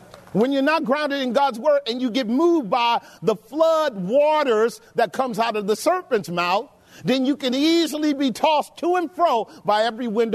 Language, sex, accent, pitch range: English, male, American, 205-285 Hz